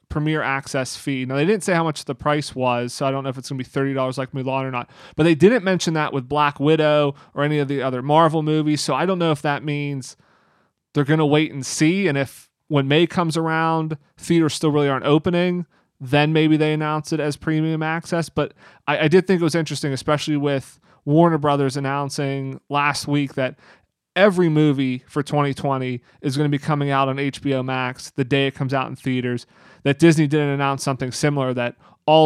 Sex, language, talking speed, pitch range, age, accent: male, English, 220 wpm, 135-160 Hz, 30-49, American